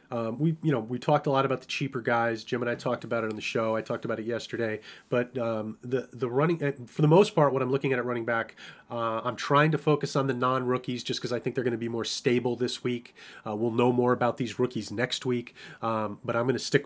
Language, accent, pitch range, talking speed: English, American, 115-130 Hz, 280 wpm